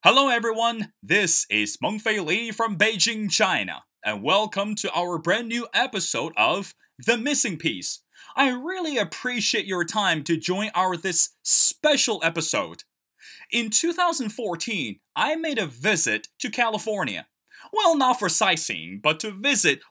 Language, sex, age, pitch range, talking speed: English, male, 20-39, 190-280 Hz, 140 wpm